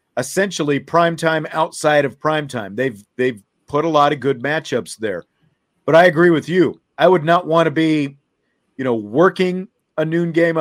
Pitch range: 130-165 Hz